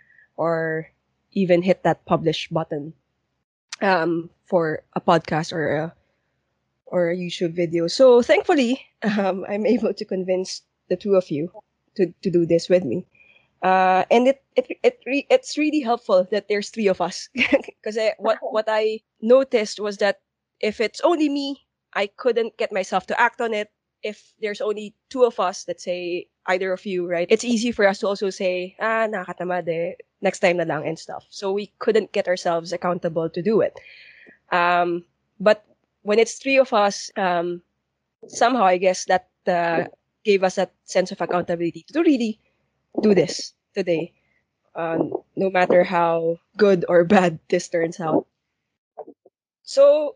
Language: English